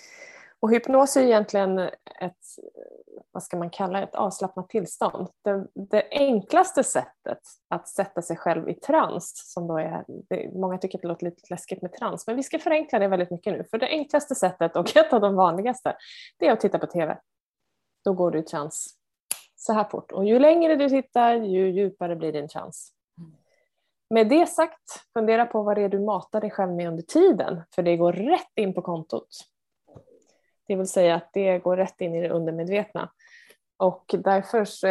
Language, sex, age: Swedish, female, 20-39